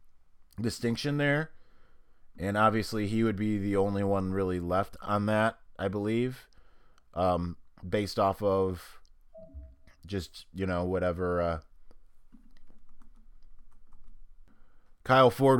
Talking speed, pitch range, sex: 105 wpm, 95-115 Hz, male